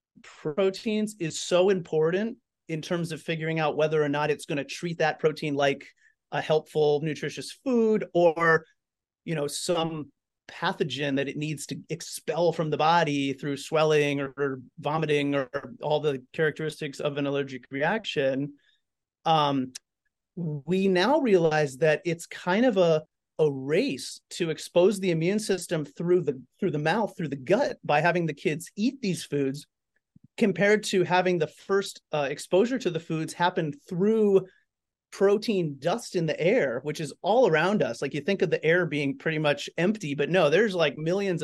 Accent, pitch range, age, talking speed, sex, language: American, 150-190 Hz, 30-49, 170 wpm, male, English